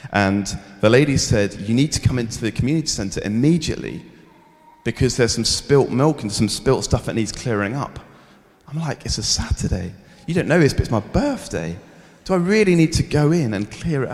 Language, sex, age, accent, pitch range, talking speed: English, male, 30-49, British, 110-140 Hz, 210 wpm